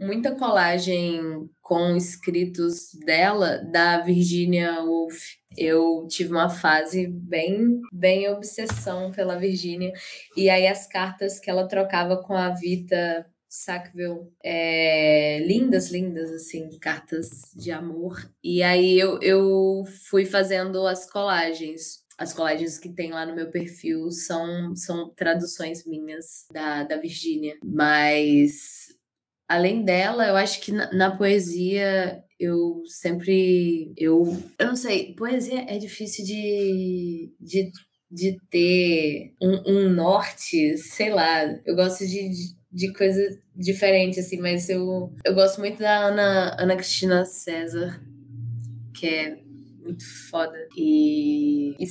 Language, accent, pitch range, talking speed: Portuguese, Brazilian, 165-195 Hz, 125 wpm